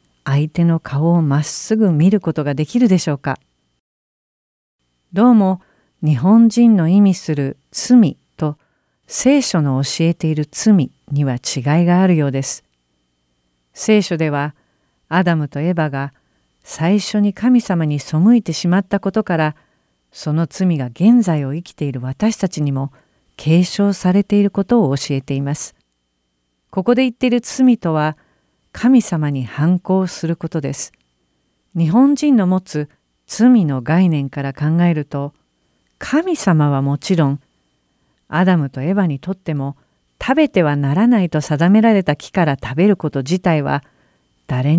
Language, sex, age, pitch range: Japanese, female, 50-69, 140-195 Hz